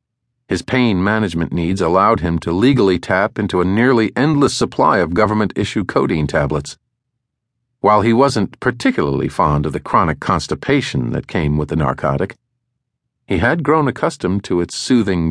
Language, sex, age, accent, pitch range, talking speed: English, male, 50-69, American, 90-125 Hz, 155 wpm